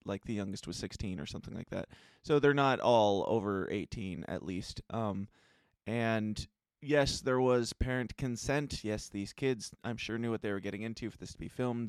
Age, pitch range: 20-39, 100-135 Hz